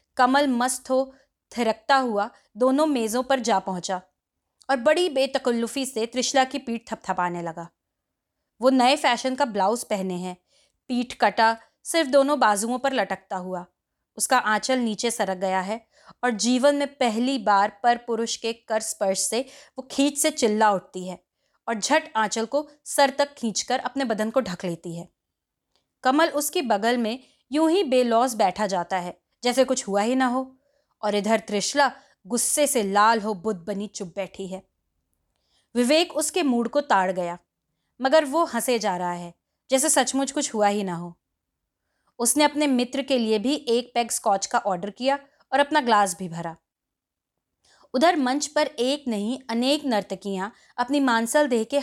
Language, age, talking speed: Hindi, 20-39, 145 wpm